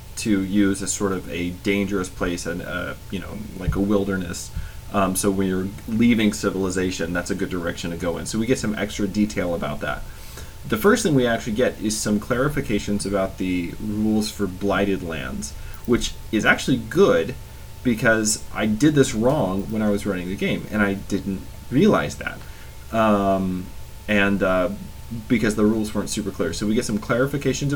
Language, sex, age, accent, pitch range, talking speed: English, male, 30-49, American, 95-110 Hz, 185 wpm